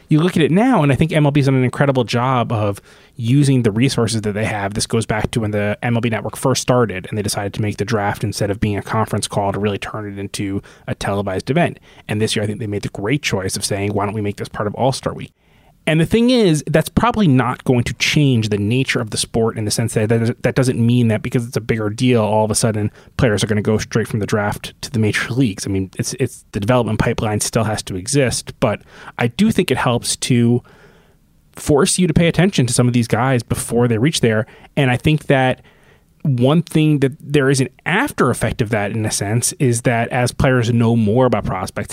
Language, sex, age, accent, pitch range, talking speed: English, male, 20-39, American, 110-135 Hz, 250 wpm